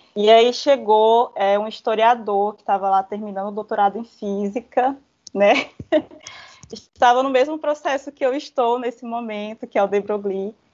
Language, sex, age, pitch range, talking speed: Portuguese, female, 20-39, 190-230 Hz, 155 wpm